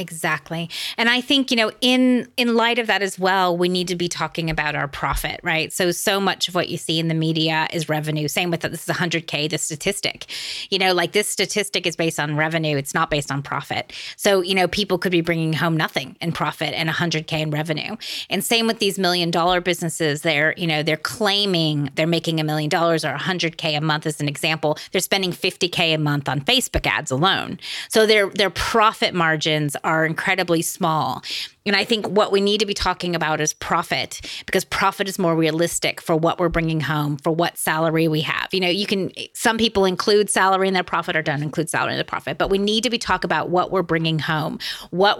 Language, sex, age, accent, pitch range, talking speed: English, female, 30-49, American, 160-195 Hz, 225 wpm